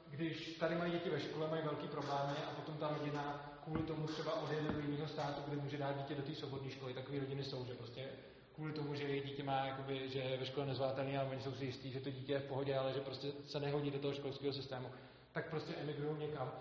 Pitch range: 135-165 Hz